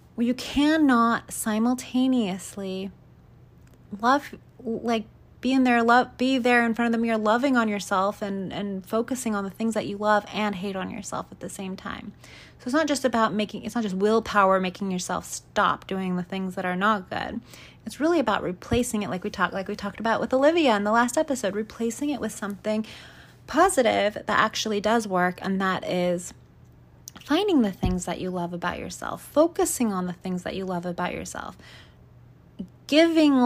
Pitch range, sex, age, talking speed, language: 185-240 Hz, female, 30-49, 185 wpm, English